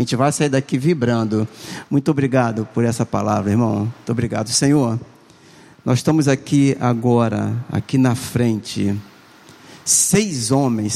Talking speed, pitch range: 130 wpm, 125-165 Hz